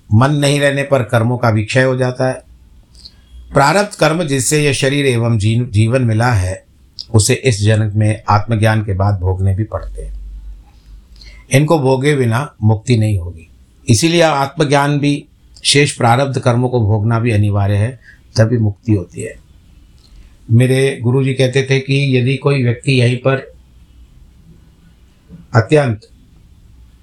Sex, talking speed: male, 140 wpm